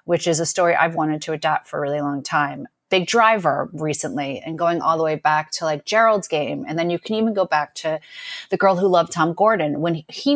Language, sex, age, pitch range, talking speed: English, female, 30-49, 150-180 Hz, 245 wpm